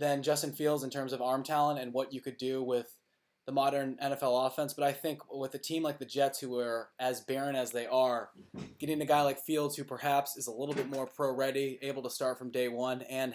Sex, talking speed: male, 245 wpm